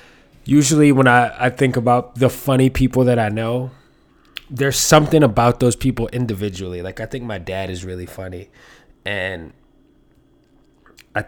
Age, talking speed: 20-39, 150 wpm